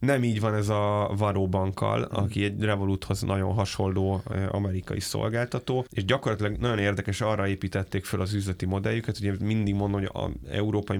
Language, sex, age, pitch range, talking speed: Hungarian, male, 10-29, 95-105 Hz, 165 wpm